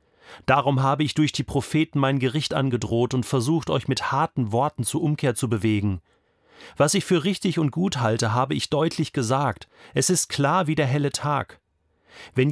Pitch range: 110-150 Hz